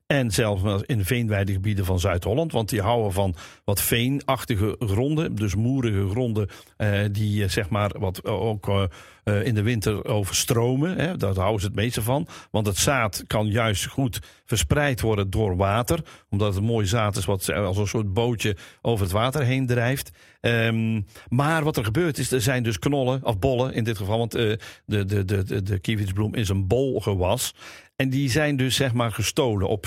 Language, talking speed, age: Dutch, 190 wpm, 50-69